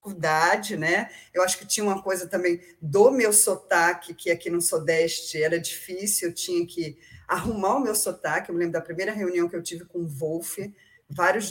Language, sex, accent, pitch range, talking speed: Portuguese, female, Brazilian, 180-275 Hz, 200 wpm